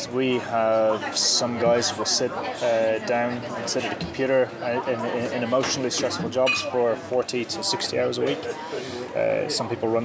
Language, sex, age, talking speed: English, male, 20-39, 185 wpm